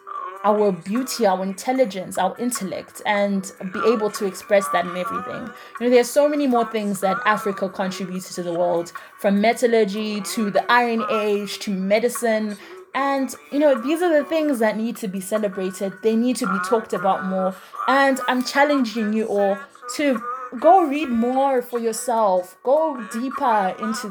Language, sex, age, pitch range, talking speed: English, female, 20-39, 200-260 Hz, 170 wpm